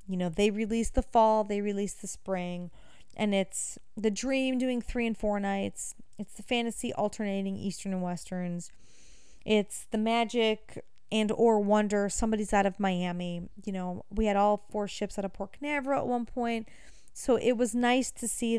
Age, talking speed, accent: 30-49, 180 wpm, American